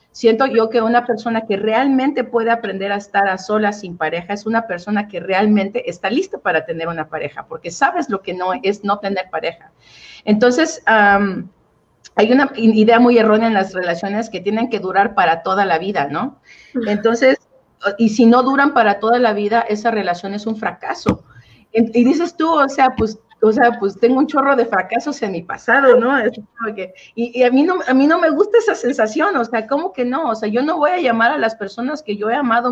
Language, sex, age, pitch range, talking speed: Spanish, female, 40-59, 200-250 Hz, 215 wpm